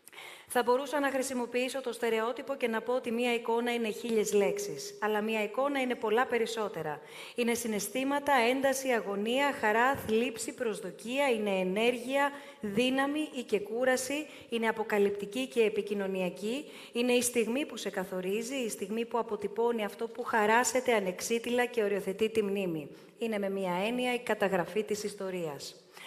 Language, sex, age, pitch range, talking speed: Greek, female, 30-49, 205-250 Hz, 145 wpm